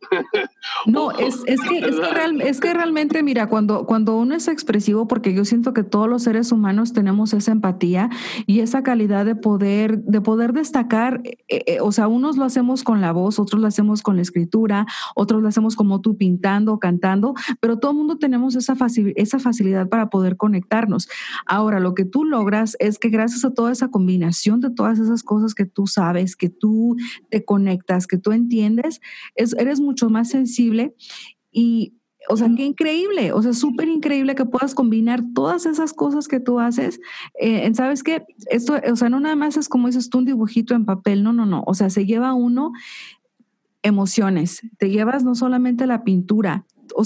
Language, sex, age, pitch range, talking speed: Spanish, female, 40-59, 210-260 Hz, 195 wpm